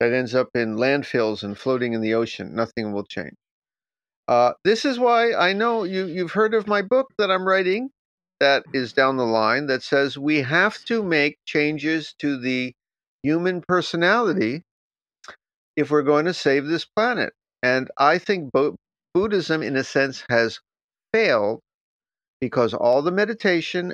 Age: 50-69